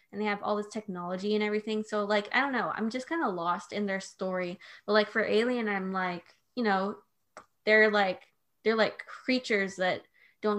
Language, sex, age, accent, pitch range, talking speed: English, female, 20-39, American, 195-220 Hz, 200 wpm